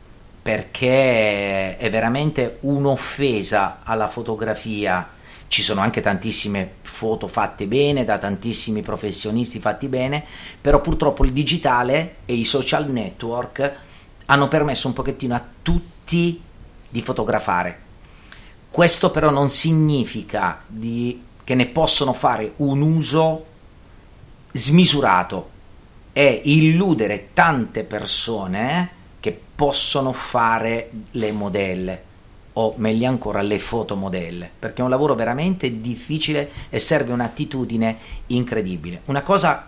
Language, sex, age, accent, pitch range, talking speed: Italian, male, 40-59, native, 105-140 Hz, 110 wpm